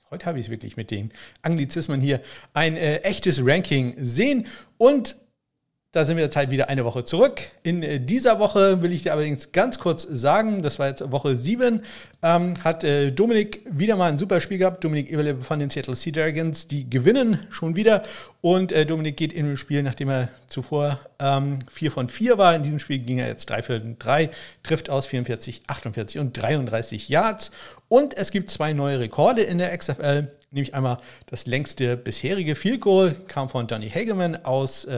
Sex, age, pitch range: male, 50-69, 130-175 Hz